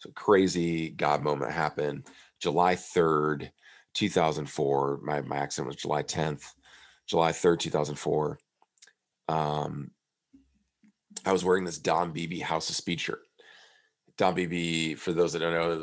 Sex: male